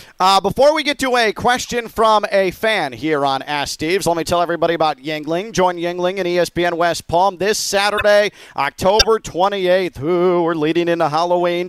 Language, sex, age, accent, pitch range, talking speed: English, male, 40-59, American, 165-225 Hz, 175 wpm